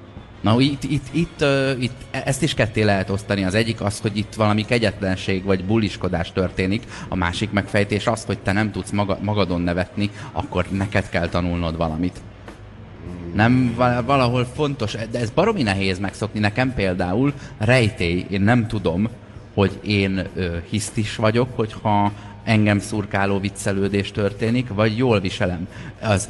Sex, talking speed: male, 150 wpm